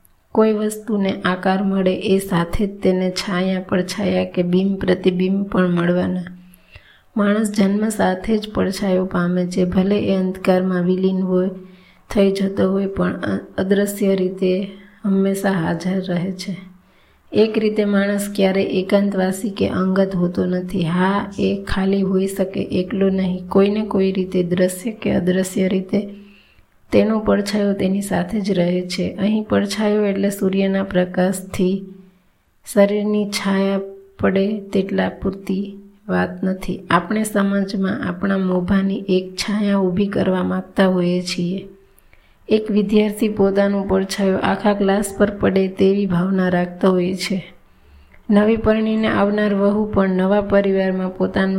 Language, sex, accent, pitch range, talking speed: Gujarati, female, native, 185-200 Hz, 110 wpm